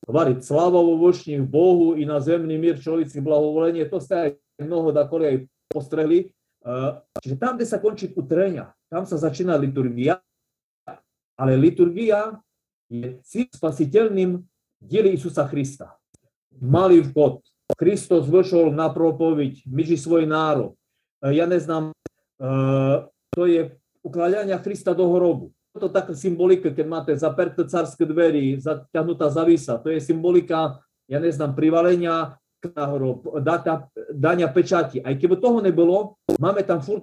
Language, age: Slovak, 40-59